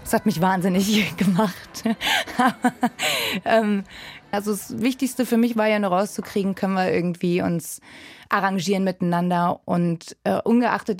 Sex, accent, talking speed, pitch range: female, German, 120 wpm, 190-225 Hz